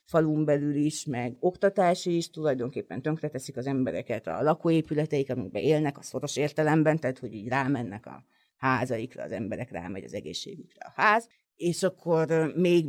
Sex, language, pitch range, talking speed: female, Hungarian, 135-160 Hz, 155 wpm